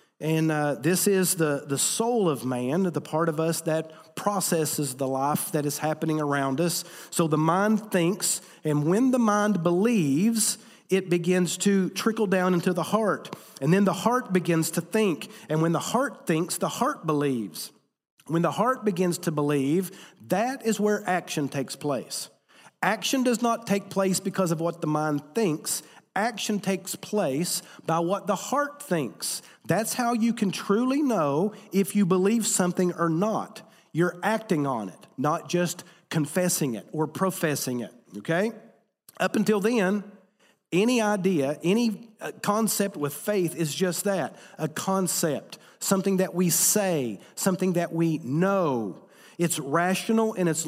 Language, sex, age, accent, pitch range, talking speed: English, male, 40-59, American, 160-210 Hz, 160 wpm